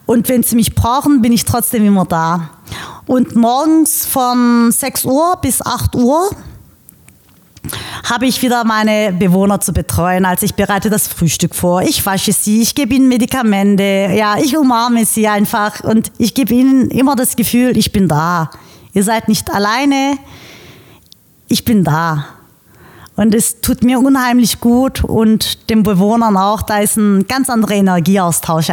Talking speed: 160 wpm